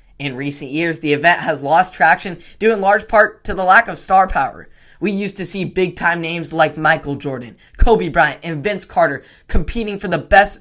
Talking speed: 210 wpm